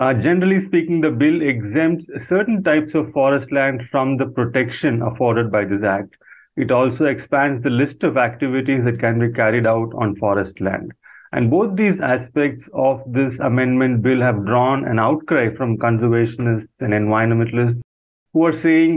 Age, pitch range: 30-49, 115-140 Hz